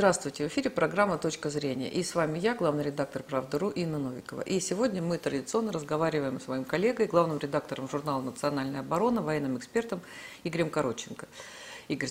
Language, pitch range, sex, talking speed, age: Russian, 145-180 Hz, female, 165 wpm, 50-69